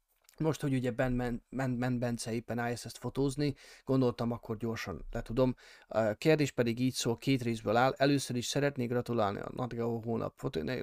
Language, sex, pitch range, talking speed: Hungarian, male, 115-135 Hz, 160 wpm